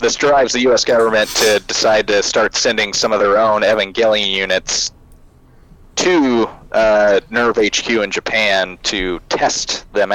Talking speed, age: 150 wpm, 30-49